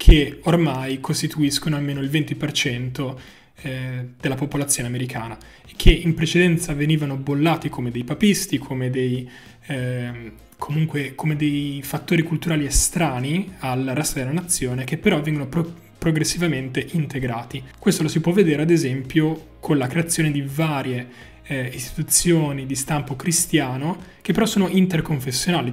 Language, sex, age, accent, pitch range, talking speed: Italian, male, 20-39, native, 135-165 Hz, 135 wpm